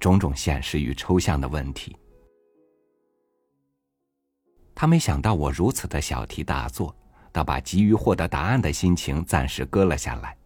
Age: 50-69